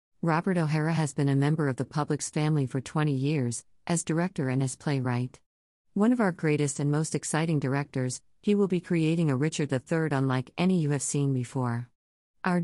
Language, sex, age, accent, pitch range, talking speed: English, female, 50-69, American, 130-160 Hz, 190 wpm